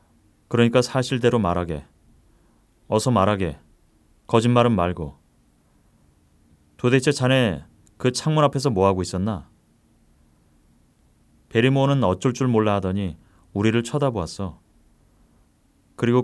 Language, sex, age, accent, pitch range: Korean, male, 30-49, native, 90-130 Hz